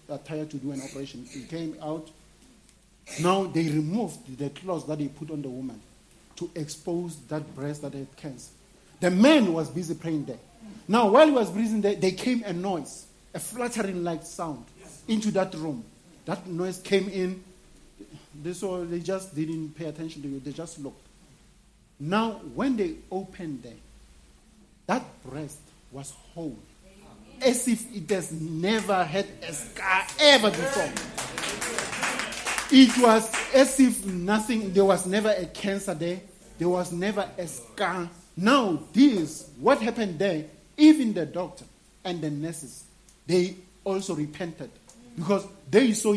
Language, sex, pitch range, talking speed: English, male, 155-205 Hz, 150 wpm